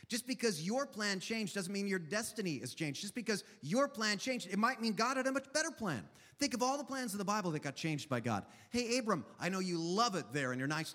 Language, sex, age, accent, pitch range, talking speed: English, male, 30-49, American, 170-245 Hz, 270 wpm